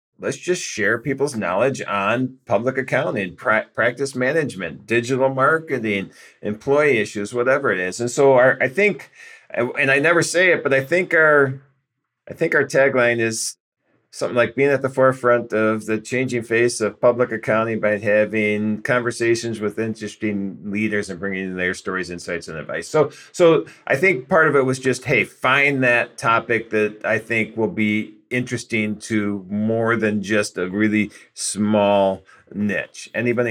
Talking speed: 160 wpm